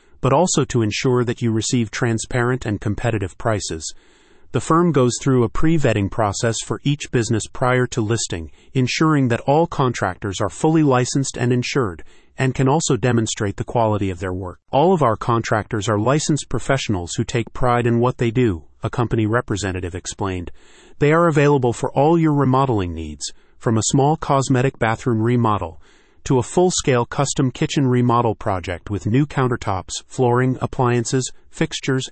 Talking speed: 165 wpm